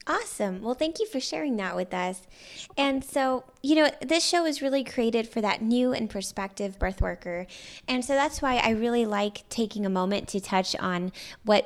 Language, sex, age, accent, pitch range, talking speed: English, female, 20-39, American, 180-230 Hz, 200 wpm